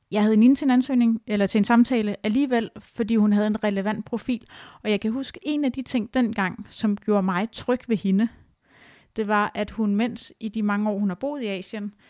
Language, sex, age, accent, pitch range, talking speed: Danish, female, 30-49, native, 190-225 Hz, 215 wpm